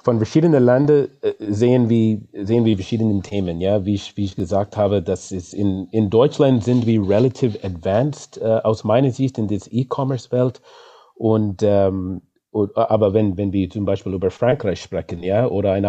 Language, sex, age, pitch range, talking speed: German, male, 30-49, 100-120 Hz, 180 wpm